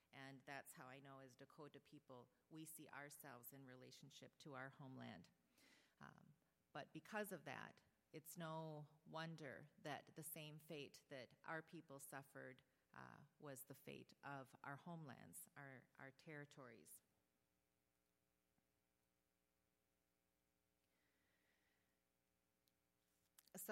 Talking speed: 110 wpm